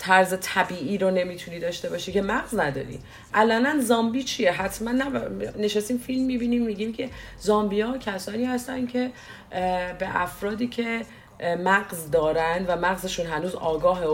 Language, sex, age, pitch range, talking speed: English, female, 40-59, 175-230 Hz, 135 wpm